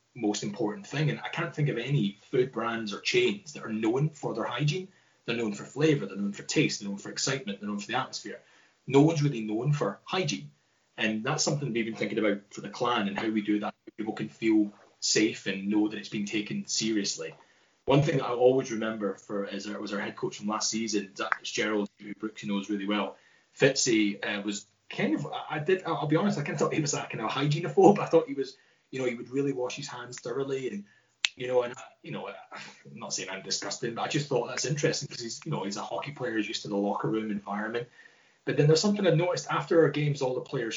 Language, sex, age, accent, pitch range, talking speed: English, male, 20-39, British, 105-150 Hz, 245 wpm